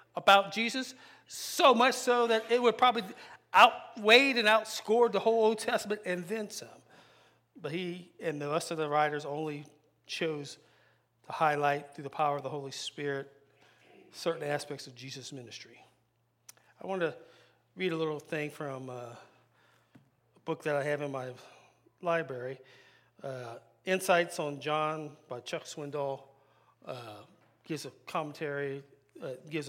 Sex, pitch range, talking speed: male, 135-180 Hz, 145 wpm